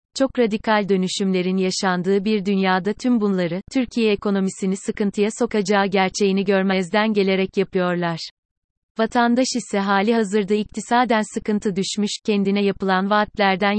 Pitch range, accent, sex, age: 190-225 Hz, native, female, 30-49